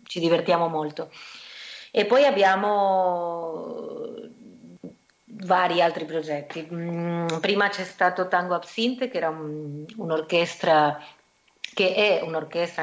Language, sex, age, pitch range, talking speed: Italian, female, 30-49, 160-185 Hz, 95 wpm